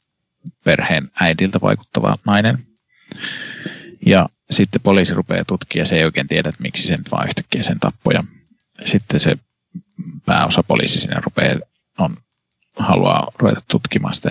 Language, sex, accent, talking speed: Finnish, male, native, 130 wpm